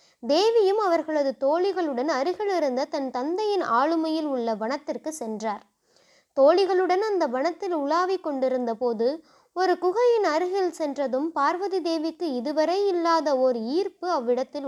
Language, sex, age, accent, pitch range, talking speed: Tamil, female, 20-39, native, 270-370 Hz, 115 wpm